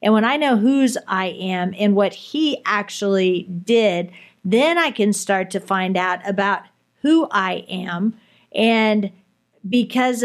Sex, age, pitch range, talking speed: female, 40-59, 200-230 Hz, 145 wpm